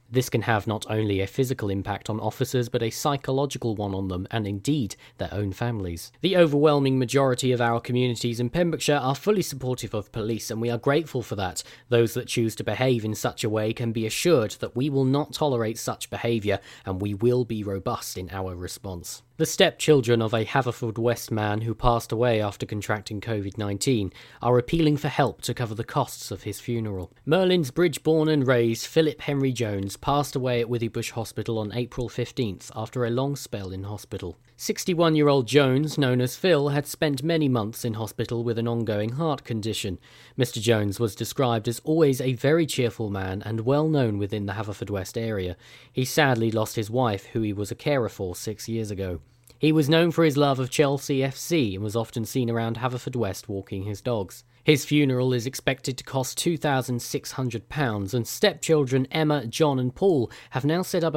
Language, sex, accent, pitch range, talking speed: English, male, British, 110-140 Hz, 190 wpm